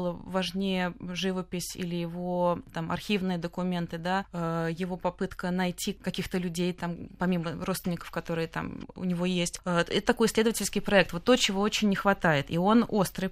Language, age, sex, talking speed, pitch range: Russian, 20-39, female, 155 wpm, 180-210 Hz